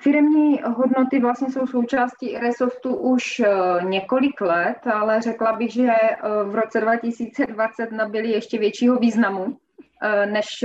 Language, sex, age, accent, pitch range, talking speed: Czech, female, 20-39, native, 200-235 Hz, 120 wpm